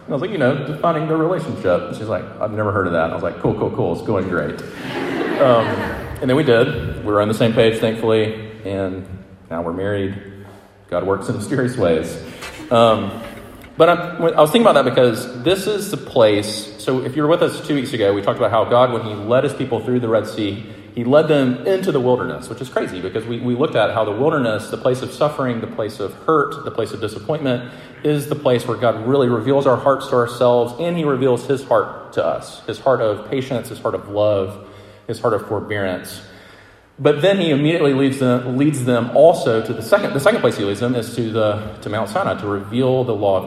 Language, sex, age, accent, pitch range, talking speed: English, male, 30-49, American, 100-135 Hz, 235 wpm